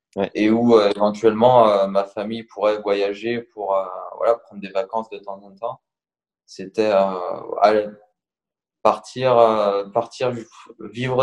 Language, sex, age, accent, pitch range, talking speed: French, male, 20-39, French, 100-115 Hz, 140 wpm